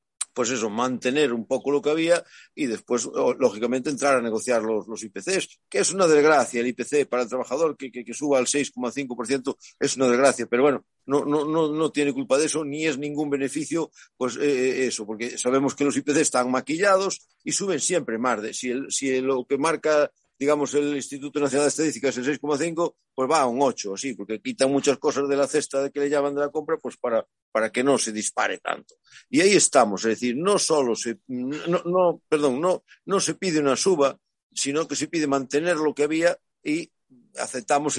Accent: Spanish